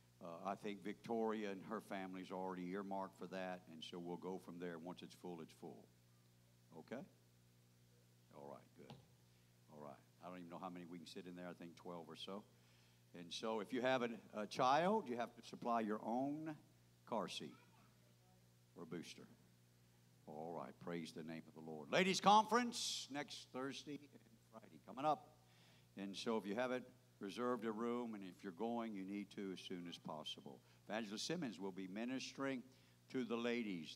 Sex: male